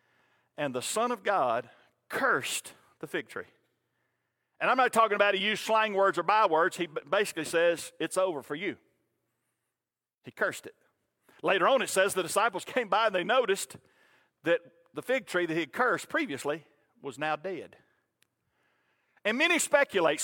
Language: English